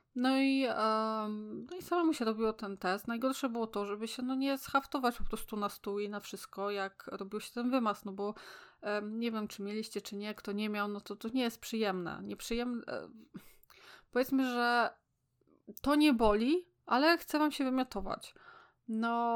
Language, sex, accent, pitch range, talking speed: Polish, female, native, 200-245 Hz, 190 wpm